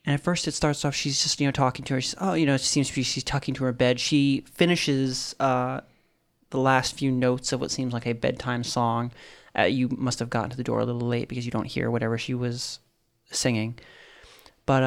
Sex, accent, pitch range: male, American, 120-145 Hz